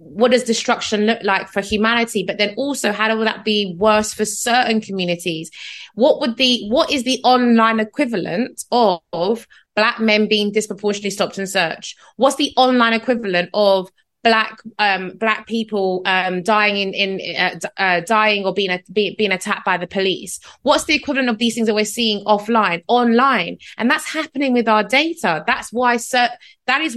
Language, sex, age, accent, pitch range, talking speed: English, female, 20-39, British, 205-250 Hz, 180 wpm